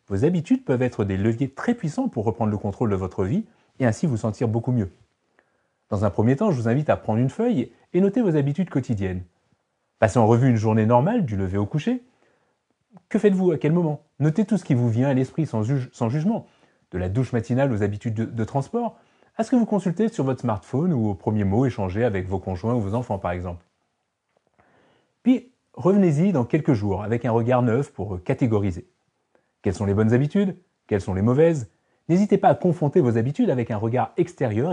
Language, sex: French, male